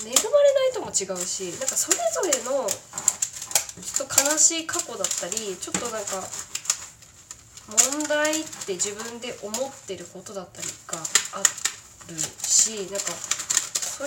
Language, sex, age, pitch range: Japanese, female, 20-39, 200-295 Hz